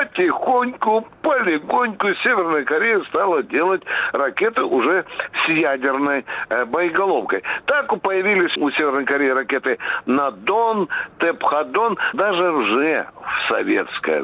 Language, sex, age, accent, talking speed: Russian, male, 60-79, native, 95 wpm